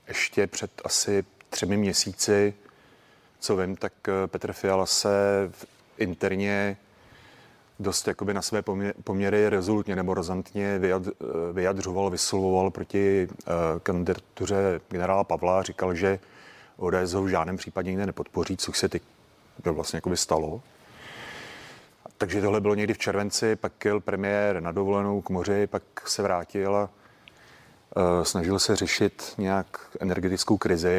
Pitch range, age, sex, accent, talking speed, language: 95-100 Hz, 30-49, male, native, 130 wpm, Czech